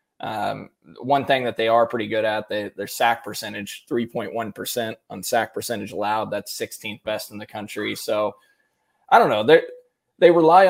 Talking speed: 180 wpm